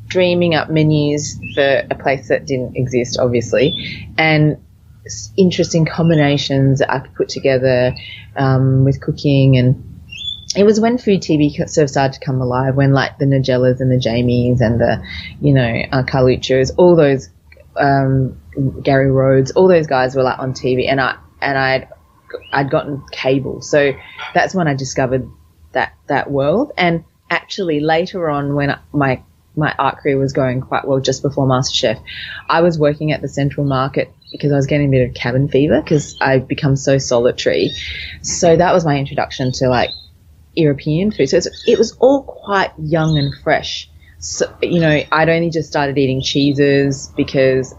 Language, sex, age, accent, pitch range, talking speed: English, female, 30-49, Australian, 130-150 Hz, 175 wpm